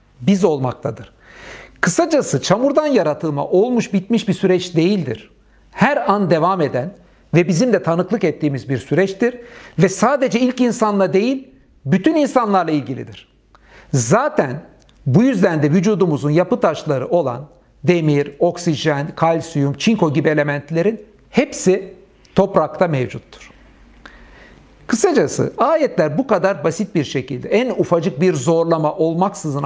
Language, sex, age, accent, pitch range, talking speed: Turkish, male, 60-79, native, 155-205 Hz, 115 wpm